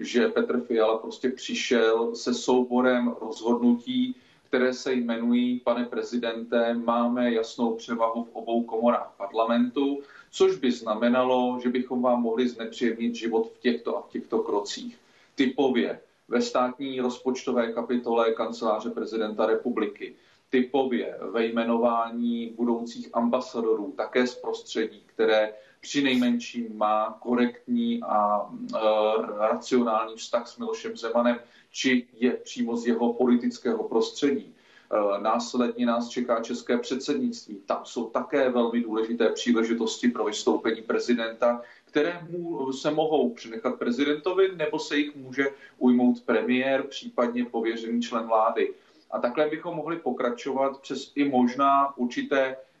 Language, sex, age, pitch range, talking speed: Czech, male, 40-59, 115-135 Hz, 120 wpm